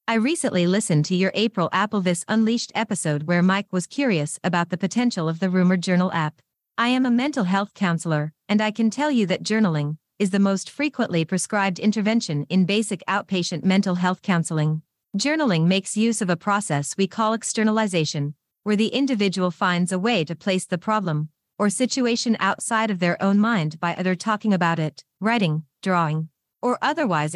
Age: 40-59